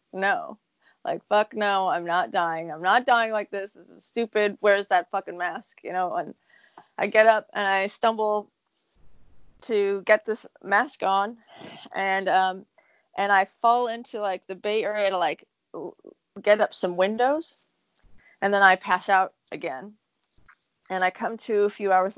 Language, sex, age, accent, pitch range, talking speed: English, female, 30-49, American, 190-230 Hz, 170 wpm